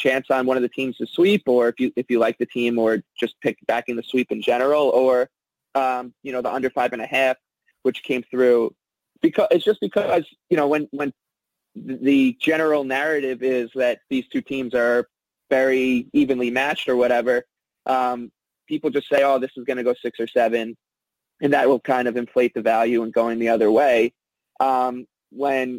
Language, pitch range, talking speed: English, 120-140 Hz, 205 wpm